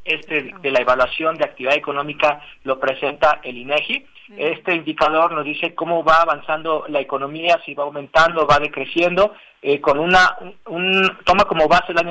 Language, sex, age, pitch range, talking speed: Spanish, male, 40-59, 150-190 Hz, 170 wpm